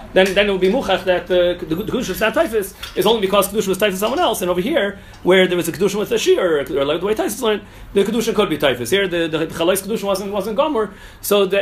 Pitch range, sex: 150-195 Hz, male